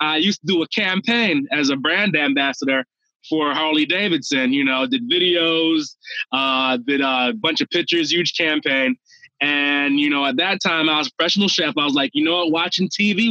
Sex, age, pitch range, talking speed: male, 20-39, 155-220 Hz, 200 wpm